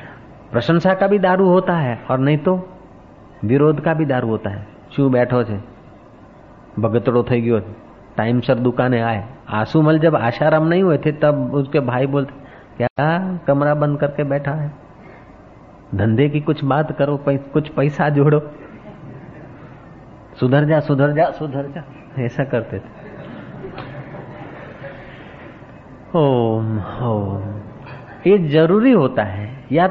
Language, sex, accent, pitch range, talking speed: Hindi, male, native, 130-180 Hz, 130 wpm